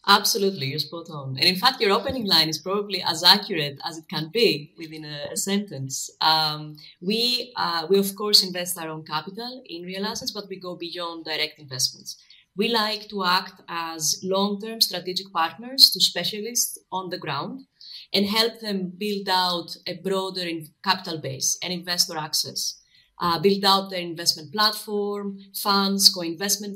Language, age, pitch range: English, 30-49, 170-205 Hz